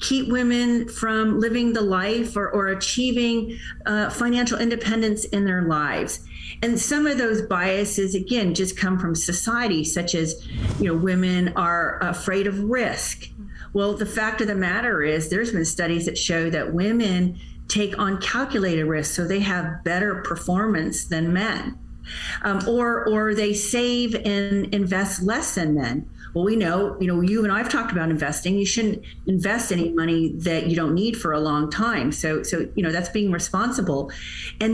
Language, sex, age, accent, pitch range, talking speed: English, female, 40-59, American, 160-210 Hz, 175 wpm